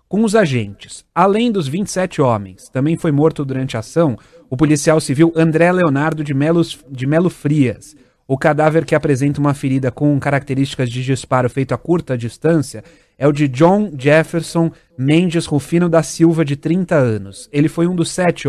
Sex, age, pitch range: male, 30-49, 135-170 Hz